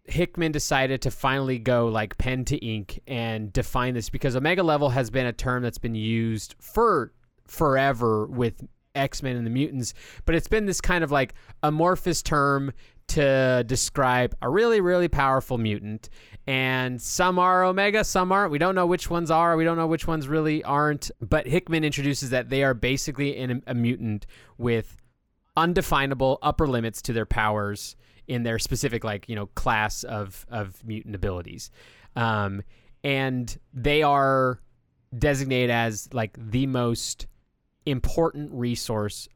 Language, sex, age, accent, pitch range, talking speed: English, male, 20-39, American, 110-140 Hz, 155 wpm